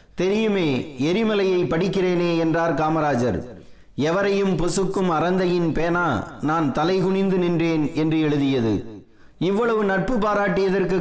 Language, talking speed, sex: Tamil, 95 wpm, male